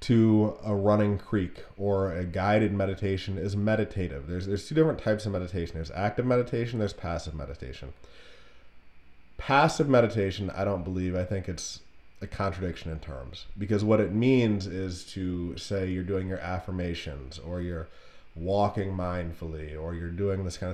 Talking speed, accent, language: 160 wpm, American, English